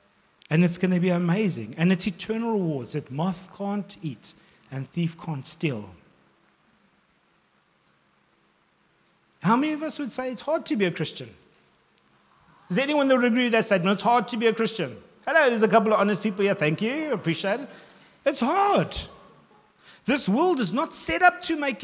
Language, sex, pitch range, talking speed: English, male, 160-225 Hz, 185 wpm